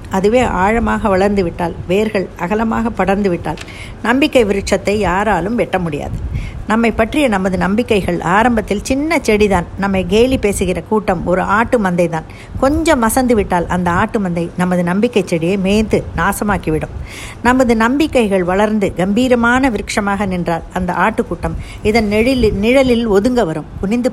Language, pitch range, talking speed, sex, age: Tamil, 180-235 Hz, 130 wpm, female, 60-79